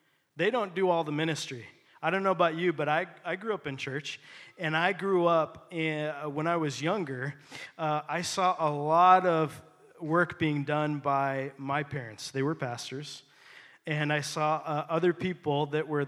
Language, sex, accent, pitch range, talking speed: English, male, American, 150-180 Hz, 185 wpm